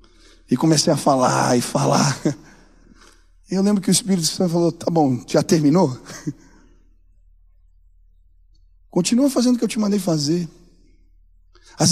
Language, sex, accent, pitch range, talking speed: Portuguese, male, Brazilian, 220-280 Hz, 135 wpm